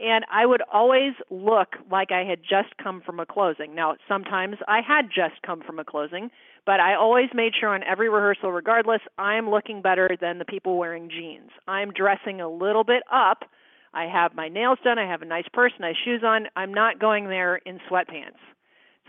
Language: English